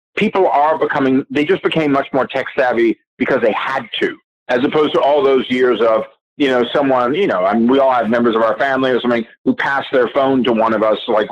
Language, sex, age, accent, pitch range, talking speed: English, male, 50-69, American, 125-195 Hz, 245 wpm